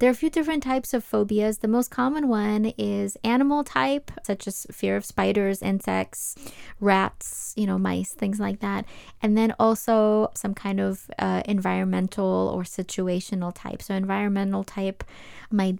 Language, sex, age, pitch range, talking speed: English, female, 20-39, 185-215 Hz, 165 wpm